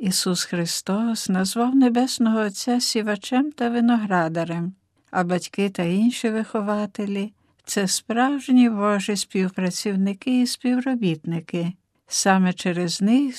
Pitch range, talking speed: 185-235 Hz, 105 wpm